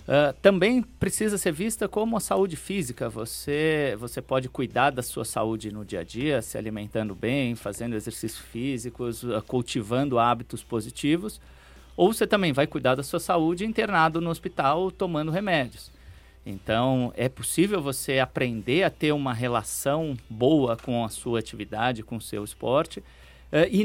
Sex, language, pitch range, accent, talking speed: male, Portuguese, 115-155 Hz, Brazilian, 150 wpm